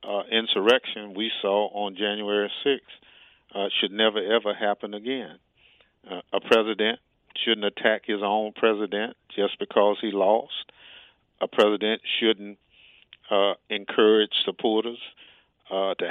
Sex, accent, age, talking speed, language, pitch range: male, American, 50-69, 125 wpm, English, 105-120 Hz